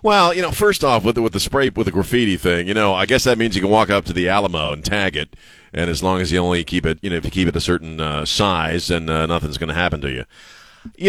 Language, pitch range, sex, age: English, 95-140 Hz, male, 40-59